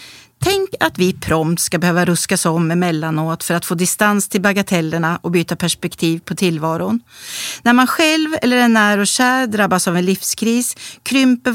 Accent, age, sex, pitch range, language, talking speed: native, 40-59, female, 175-240 Hz, Swedish, 170 wpm